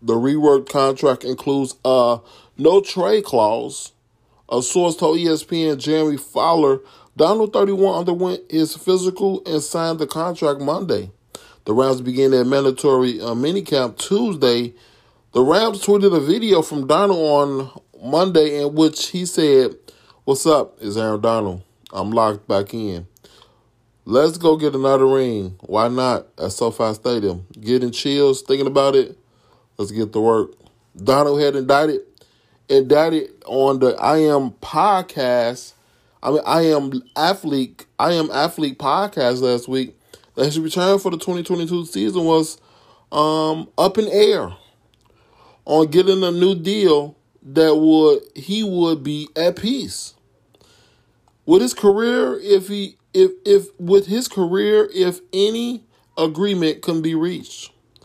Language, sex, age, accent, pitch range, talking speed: English, male, 20-39, American, 125-185 Hz, 140 wpm